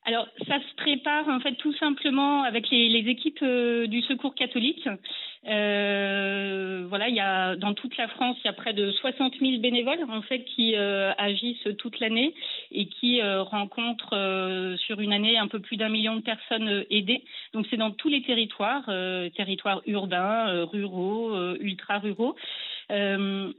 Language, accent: French, French